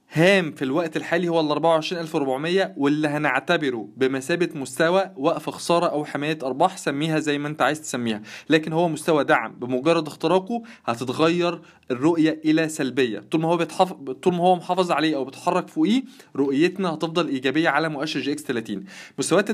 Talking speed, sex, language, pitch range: 165 wpm, male, Arabic, 150-185 Hz